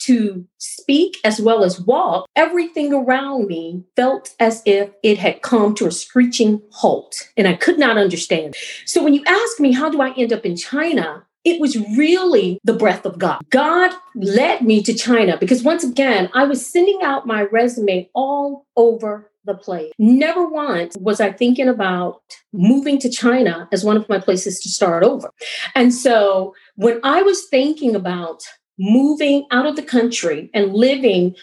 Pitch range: 195-270 Hz